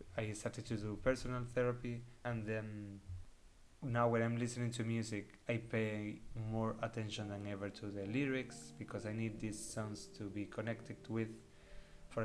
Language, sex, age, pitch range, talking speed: English, male, 20-39, 105-120 Hz, 160 wpm